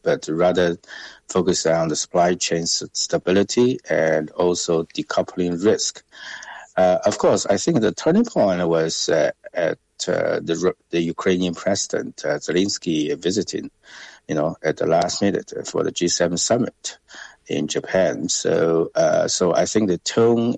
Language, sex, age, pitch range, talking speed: English, male, 60-79, 85-95 Hz, 150 wpm